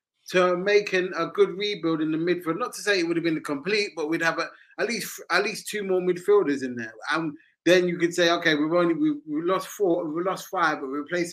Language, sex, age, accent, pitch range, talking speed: English, male, 20-39, British, 155-205 Hz, 255 wpm